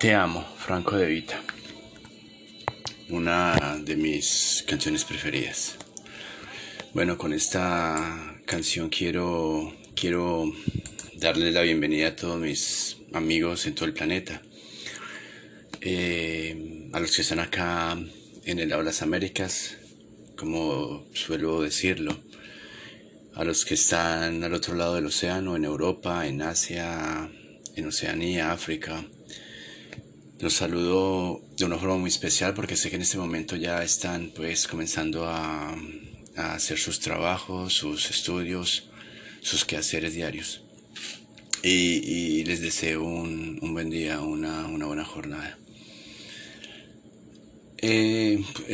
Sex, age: male, 30-49